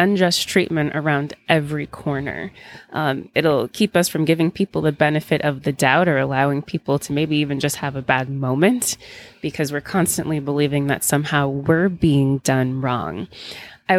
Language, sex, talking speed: English, female, 165 wpm